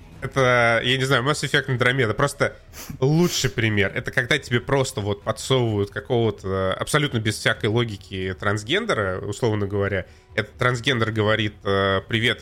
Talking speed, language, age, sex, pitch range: 135 wpm, Russian, 20-39, male, 100-130 Hz